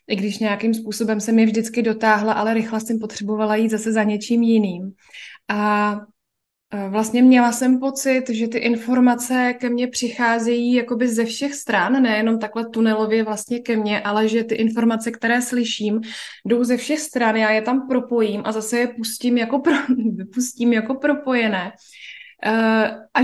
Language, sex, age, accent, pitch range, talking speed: Czech, female, 20-39, native, 215-250 Hz, 160 wpm